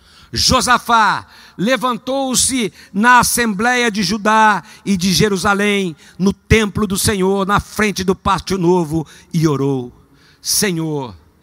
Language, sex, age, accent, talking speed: Portuguese, male, 60-79, Brazilian, 110 wpm